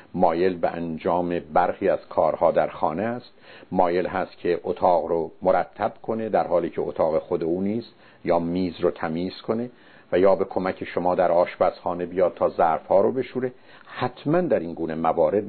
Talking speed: 175 wpm